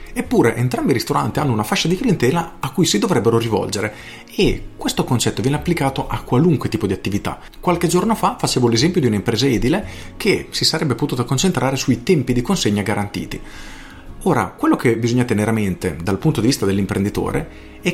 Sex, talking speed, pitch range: male, 185 wpm, 110-150 Hz